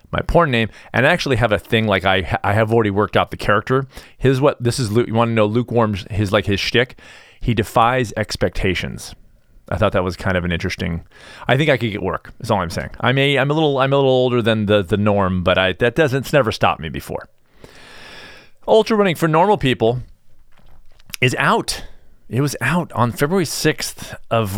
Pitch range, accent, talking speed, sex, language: 105-135 Hz, American, 220 wpm, male, English